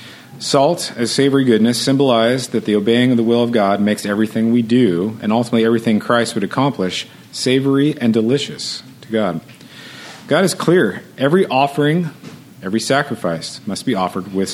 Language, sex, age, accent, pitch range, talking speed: English, male, 40-59, American, 110-135 Hz, 160 wpm